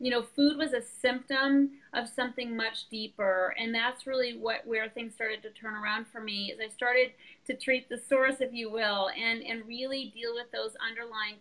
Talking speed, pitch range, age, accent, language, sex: 205 wpm, 215-255 Hz, 30-49, American, English, female